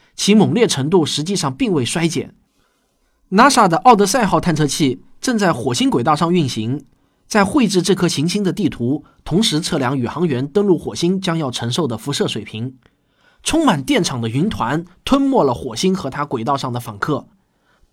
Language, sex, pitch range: Chinese, male, 135-205 Hz